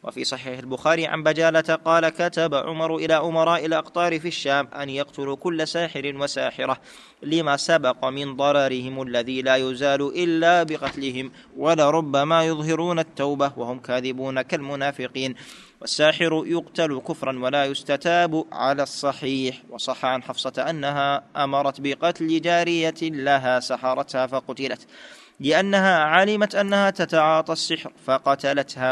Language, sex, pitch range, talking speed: Arabic, male, 130-160 Hz, 115 wpm